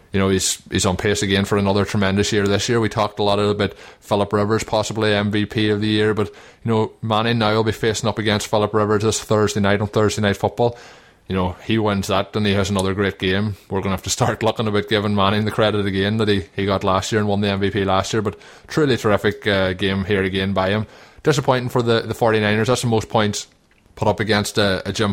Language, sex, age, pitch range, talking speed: English, male, 20-39, 100-110 Hz, 255 wpm